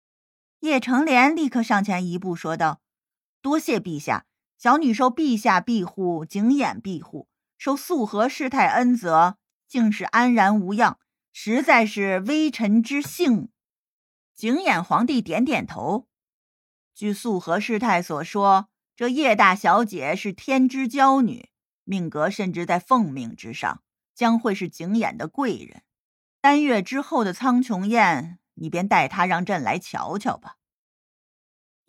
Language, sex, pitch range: Chinese, female, 190-255 Hz